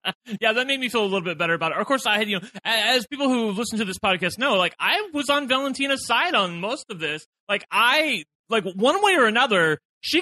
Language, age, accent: English, 30-49, American